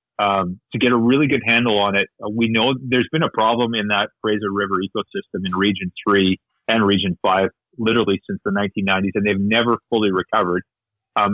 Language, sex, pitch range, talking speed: English, male, 95-115 Hz, 190 wpm